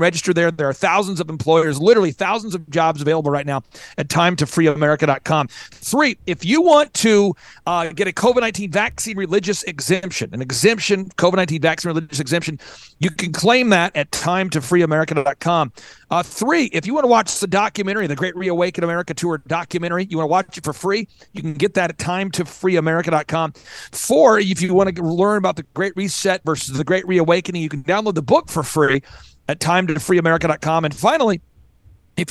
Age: 40-59